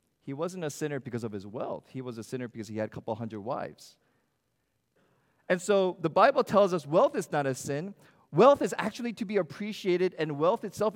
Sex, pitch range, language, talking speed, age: male, 110-150 Hz, English, 215 wpm, 40-59